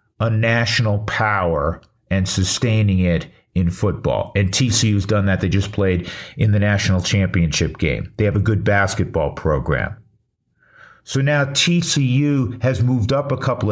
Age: 50-69